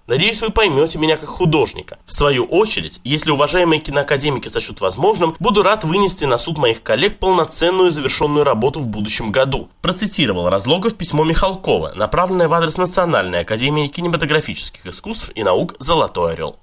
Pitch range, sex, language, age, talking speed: 140-205 Hz, male, Russian, 20-39, 150 wpm